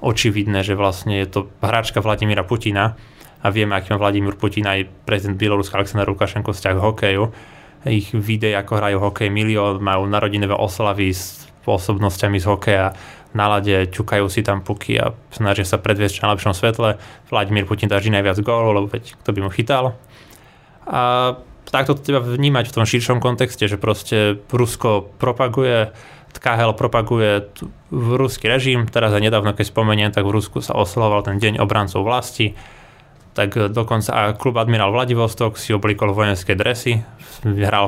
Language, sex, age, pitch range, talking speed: Slovak, male, 20-39, 100-115 Hz, 155 wpm